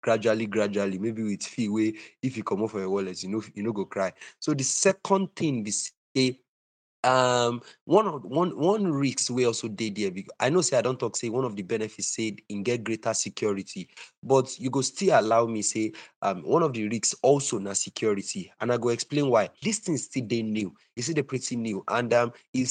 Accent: Jamaican